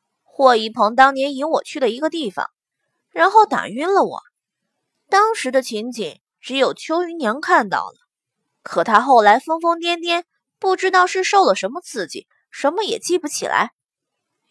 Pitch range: 245-370 Hz